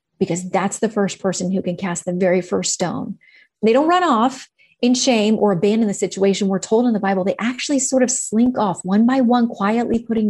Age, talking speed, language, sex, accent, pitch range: 30-49, 220 wpm, English, female, American, 195-235 Hz